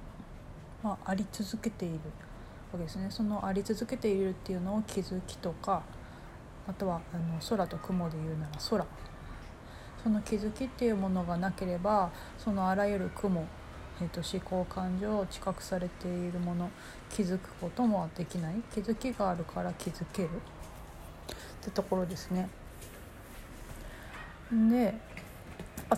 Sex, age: female, 40-59